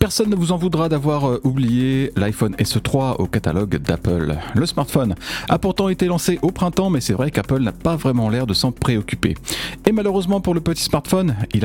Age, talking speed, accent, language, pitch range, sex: 40-59, 195 wpm, French, French, 110-165 Hz, male